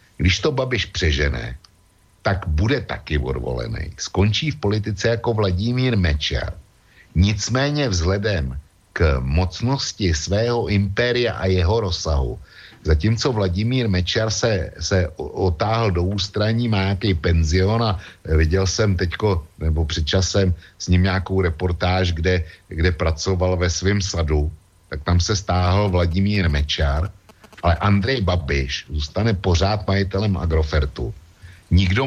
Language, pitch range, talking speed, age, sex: Slovak, 85-105 Hz, 120 wpm, 60-79, male